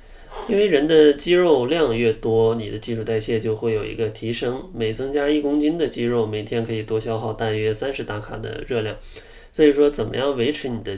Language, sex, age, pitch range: Chinese, male, 20-39, 110-145 Hz